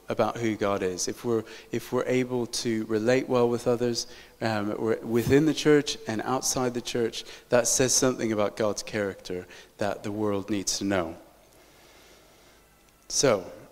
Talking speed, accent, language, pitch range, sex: 155 wpm, British, English, 110-135 Hz, male